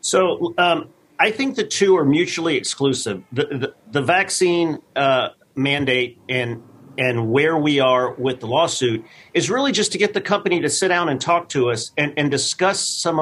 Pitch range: 130-165 Hz